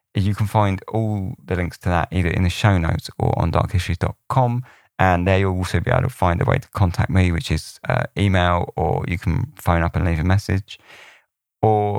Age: 20-39